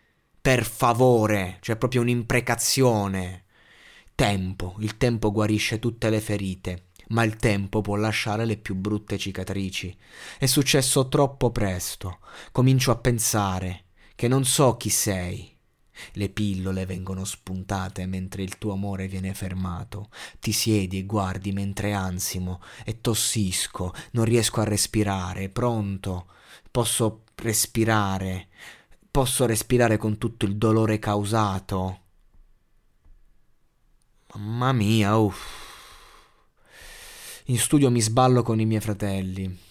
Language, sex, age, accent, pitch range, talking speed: Italian, male, 20-39, native, 95-110 Hz, 115 wpm